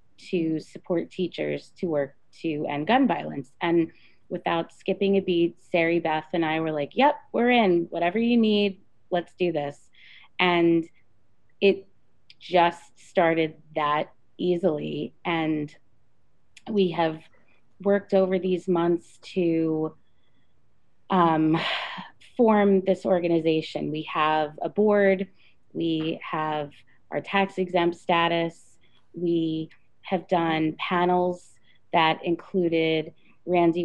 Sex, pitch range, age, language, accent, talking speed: female, 155-180 Hz, 30-49, English, American, 115 wpm